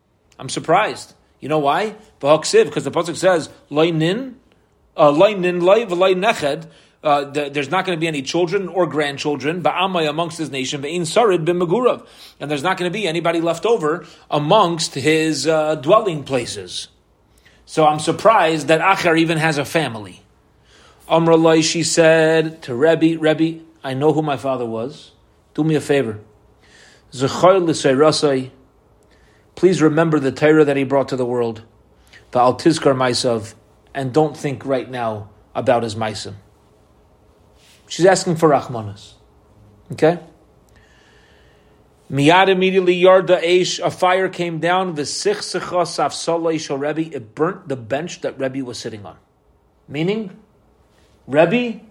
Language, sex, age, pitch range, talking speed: English, male, 30-49, 130-170 Hz, 125 wpm